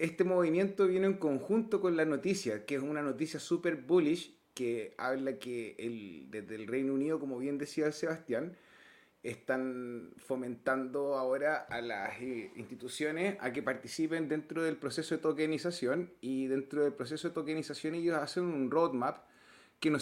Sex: male